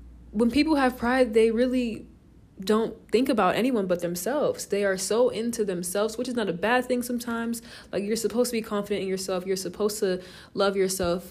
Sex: female